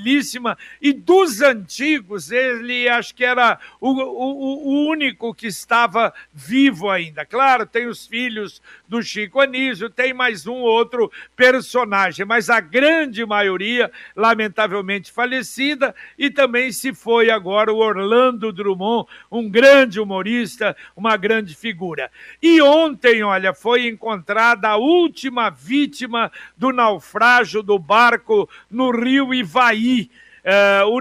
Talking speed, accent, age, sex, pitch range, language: 120 wpm, Brazilian, 60-79, male, 210-255 Hz, Portuguese